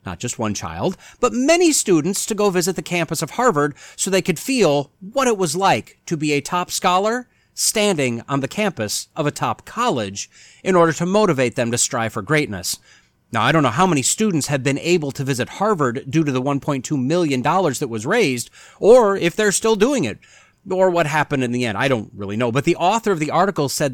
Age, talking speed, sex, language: 30-49, 220 wpm, male, English